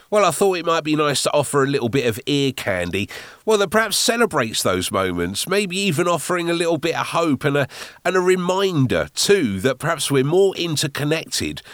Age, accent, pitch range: 40-59, British, 125-170 Hz